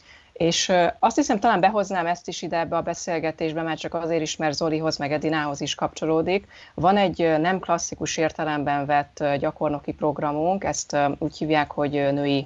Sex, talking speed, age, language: female, 165 wpm, 30-49, Hungarian